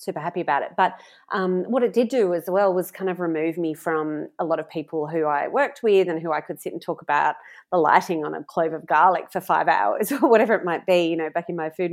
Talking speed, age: 275 wpm, 30-49